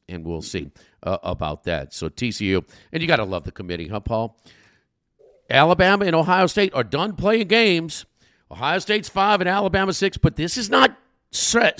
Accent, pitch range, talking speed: American, 95-150 Hz, 185 wpm